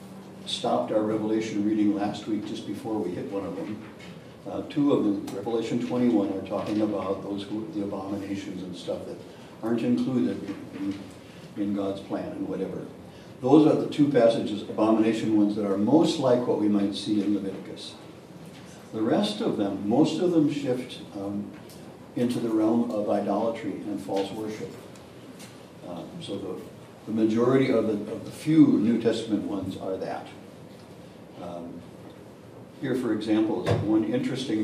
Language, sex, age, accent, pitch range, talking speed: English, male, 60-79, American, 100-120 Hz, 155 wpm